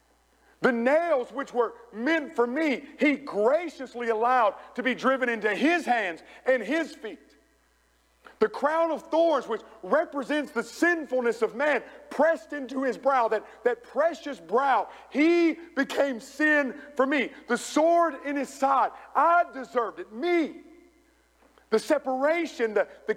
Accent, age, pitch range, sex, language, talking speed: American, 50-69, 245-310 Hz, male, English, 140 wpm